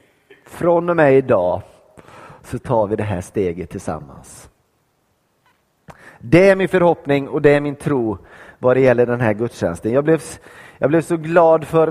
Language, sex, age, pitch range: Swedish, male, 30-49, 125-165 Hz